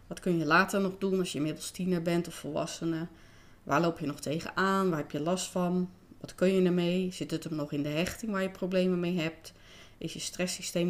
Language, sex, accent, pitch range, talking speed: Dutch, female, Dutch, 155-185 Hz, 230 wpm